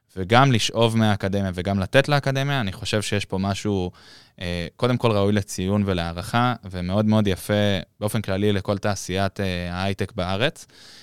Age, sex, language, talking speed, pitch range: 20-39, male, Hebrew, 135 wpm, 95-115 Hz